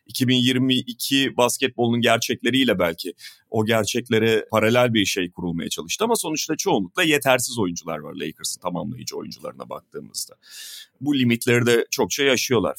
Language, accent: Turkish, native